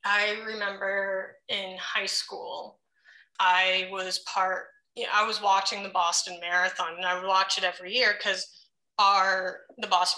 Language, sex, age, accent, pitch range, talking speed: English, female, 20-39, American, 180-210 Hz, 145 wpm